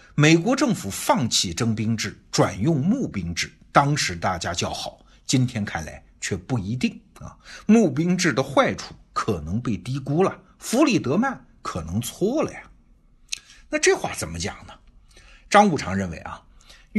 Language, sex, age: Chinese, male, 60-79